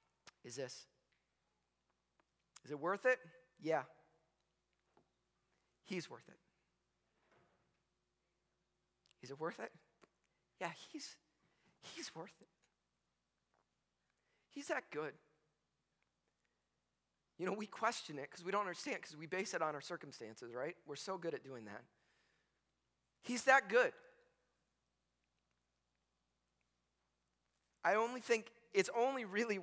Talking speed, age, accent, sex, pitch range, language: 110 wpm, 40-59, American, male, 145-215 Hz, English